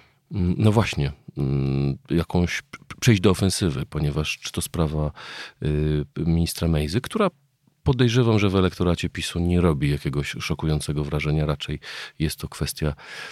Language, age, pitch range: Polish, 40-59, 75-90 Hz